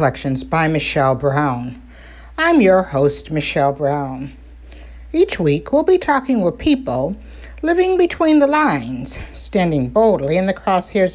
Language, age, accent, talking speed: English, 60-79, American, 135 wpm